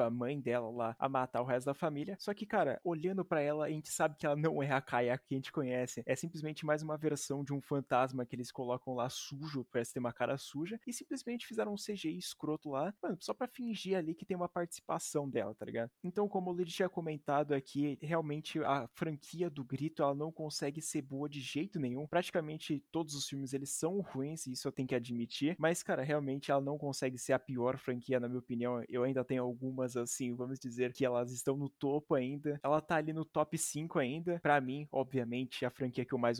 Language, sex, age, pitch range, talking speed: Portuguese, male, 20-39, 130-160 Hz, 230 wpm